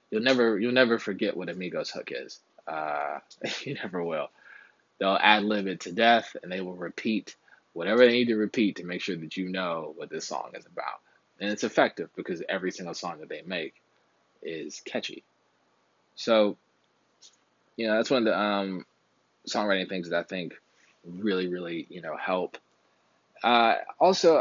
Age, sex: 20-39, male